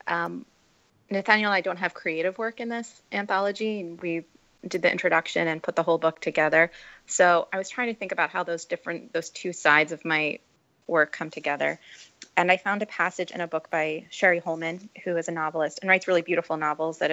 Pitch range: 160-185 Hz